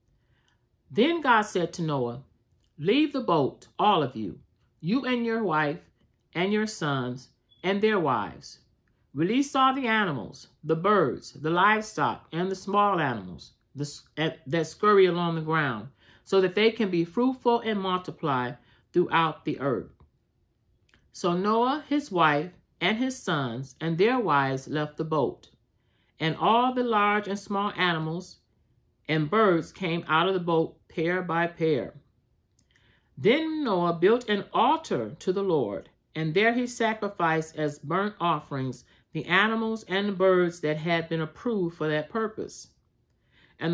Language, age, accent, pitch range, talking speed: English, 50-69, American, 145-215 Hz, 145 wpm